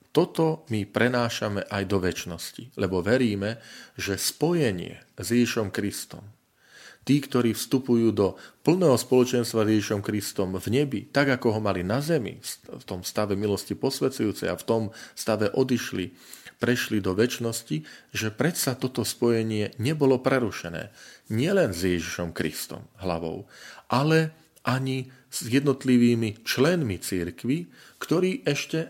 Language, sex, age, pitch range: Slovak, male, 40-59, 100-135 Hz